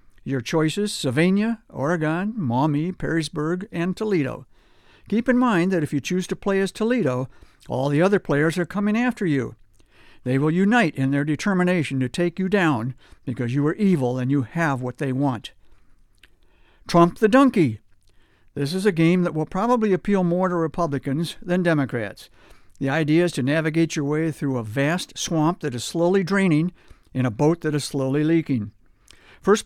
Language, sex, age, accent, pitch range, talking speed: English, male, 60-79, American, 130-180 Hz, 175 wpm